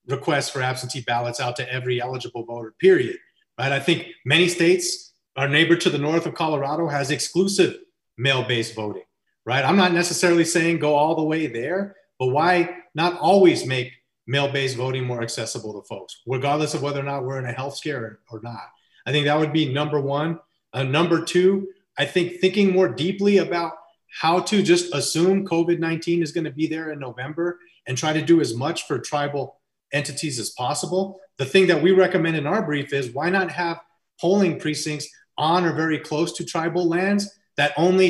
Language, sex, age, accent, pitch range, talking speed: English, male, 30-49, American, 135-175 Hz, 190 wpm